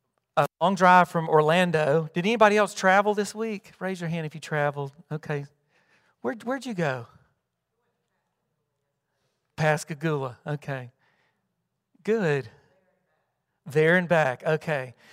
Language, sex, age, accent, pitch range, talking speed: English, male, 40-59, American, 150-185 Hz, 110 wpm